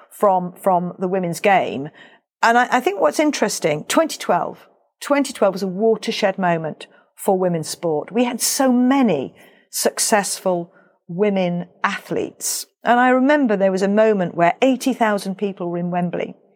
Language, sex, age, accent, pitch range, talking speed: English, female, 50-69, British, 185-240 Hz, 145 wpm